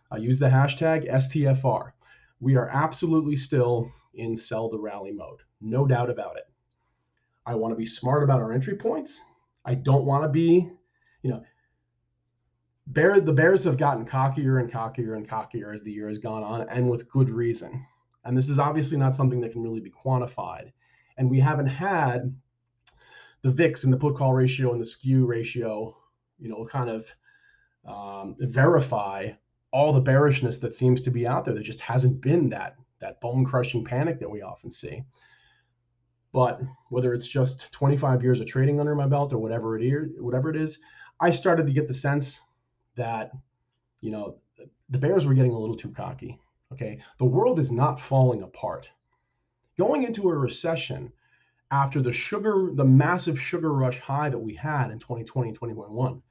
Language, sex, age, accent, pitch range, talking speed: English, male, 30-49, American, 120-145 Hz, 175 wpm